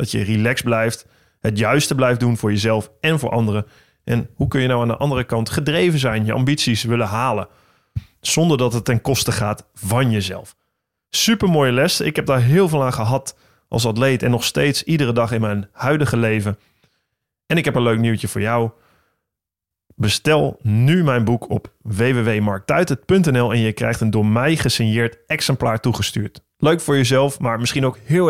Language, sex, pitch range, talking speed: Dutch, male, 110-135 Hz, 185 wpm